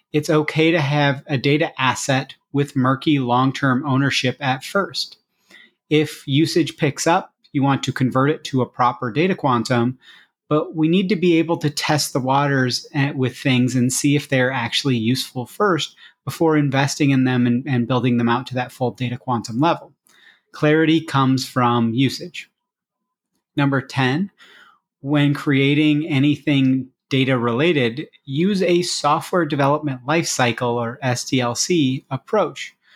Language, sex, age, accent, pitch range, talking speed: English, male, 30-49, American, 130-155 Hz, 145 wpm